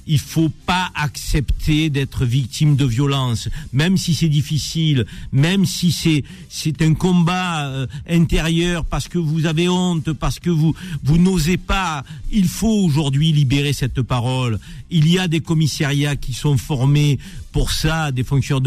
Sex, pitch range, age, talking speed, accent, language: male, 130-155 Hz, 50-69, 155 wpm, French, French